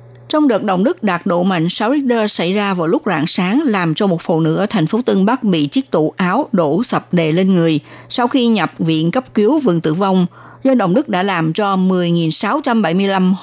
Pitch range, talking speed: 170-230 Hz, 225 wpm